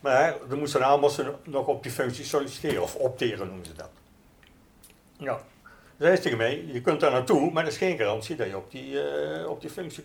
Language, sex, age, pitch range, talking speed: Dutch, male, 60-79, 120-155 Hz, 215 wpm